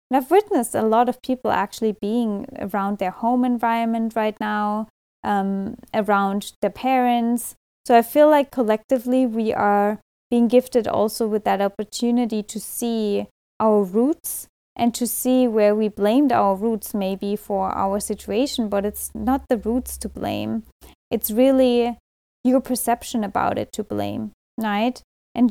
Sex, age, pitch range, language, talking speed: female, 20-39, 205-245 Hz, English, 155 wpm